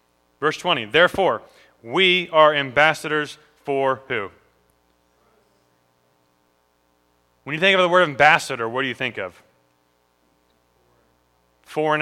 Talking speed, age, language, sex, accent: 105 wpm, 30-49, English, male, American